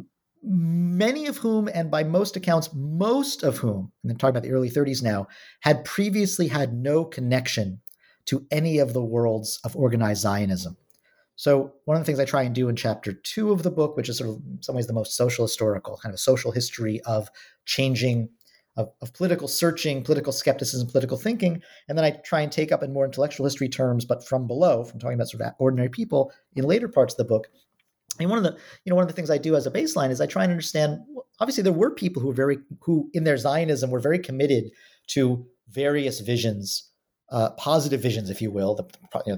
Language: English